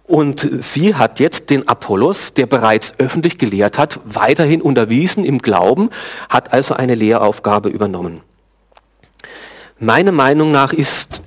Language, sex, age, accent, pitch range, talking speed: German, male, 40-59, German, 115-160 Hz, 130 wpm